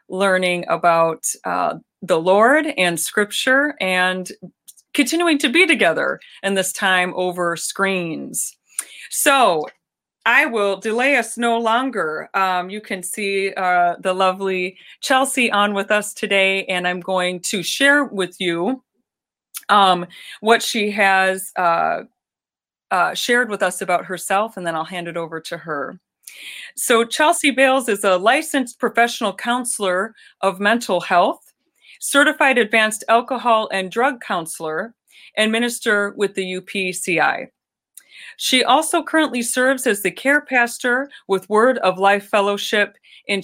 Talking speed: 135 wpm